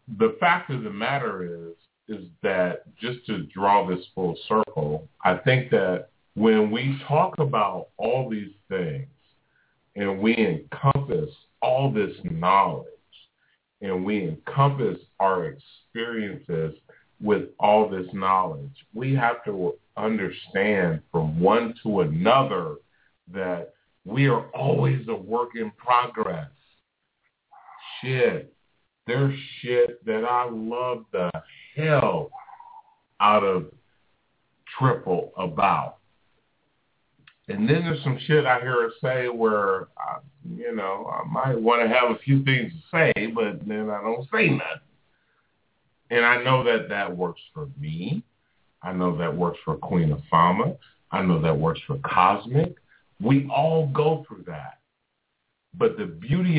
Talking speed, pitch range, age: 135 wpm, 110-155 Hz, 40-59